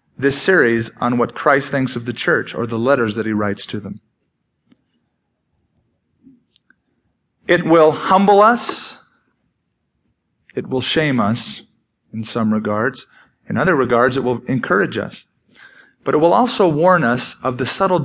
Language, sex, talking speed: English, male, 145 wpm